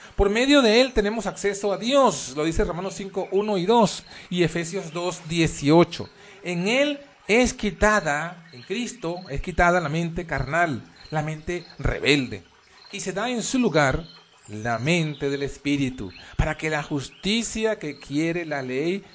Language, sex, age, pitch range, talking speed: Spanish, male, 40-59, 140-200 Hz, 160 wpm